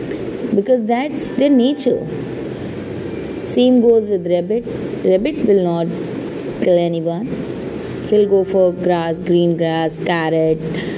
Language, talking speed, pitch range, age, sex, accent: Hindi, 110 wpm, 175-230 Hz, 20-39, female, native